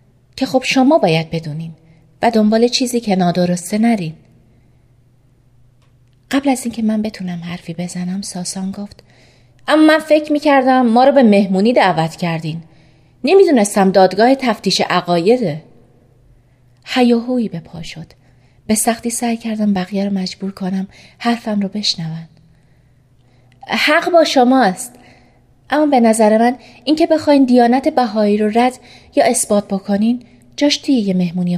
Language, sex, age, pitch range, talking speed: Persian, female, 30-49, 160-240 Hz, 125 wpm